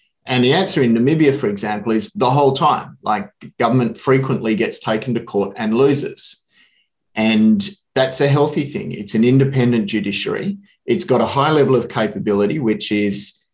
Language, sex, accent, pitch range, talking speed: English, male, Australian, 105-135 Hz, 170 wpm